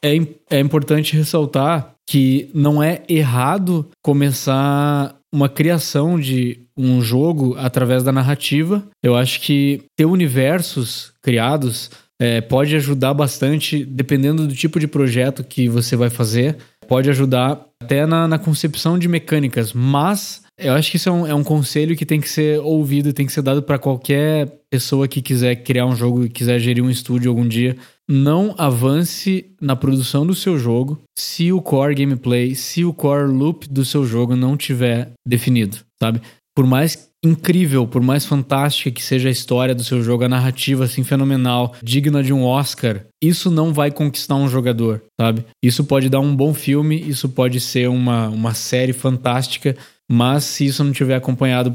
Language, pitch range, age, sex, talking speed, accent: Portuguese, 125-150 Hz, 20-39, male, 170 wpm, Brazilian